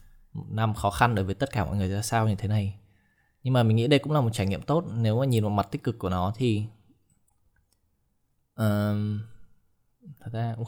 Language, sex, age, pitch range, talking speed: Vietnamese, male, 20-39, 100-120 Hz, 215 wpm